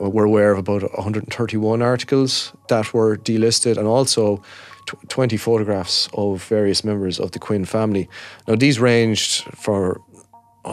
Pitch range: 100-115 Hz